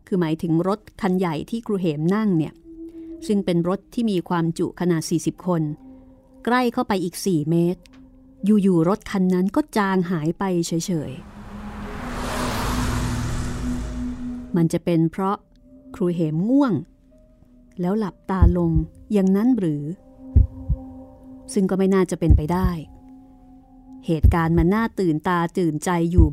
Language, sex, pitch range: Thai, female, 170-225 Hz